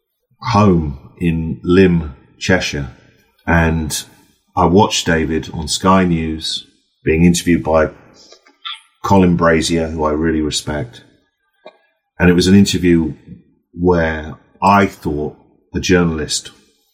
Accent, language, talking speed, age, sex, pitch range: British, English, 105 wpm, 40-59, male, 80-95 Hz